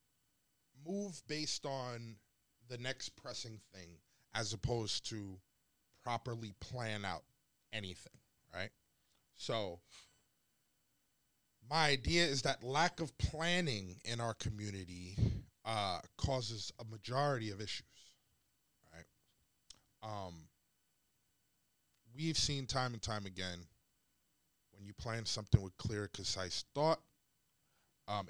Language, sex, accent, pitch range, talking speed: English, male, American, 100-130 Hz, 105 wpm